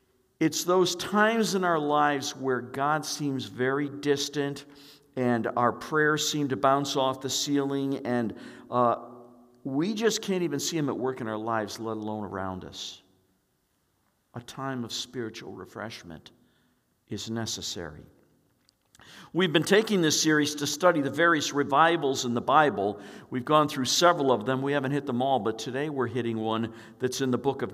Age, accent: 60-79, American